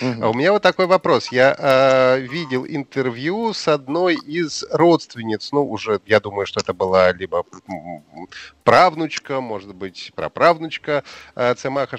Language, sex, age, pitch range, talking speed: Russian, male, 30-49, 130-180 Hz, 130 wpm